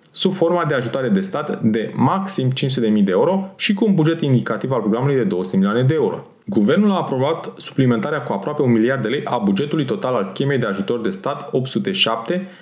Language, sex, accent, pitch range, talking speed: Romanian, male, native, 125-180 Hz, 205 wpm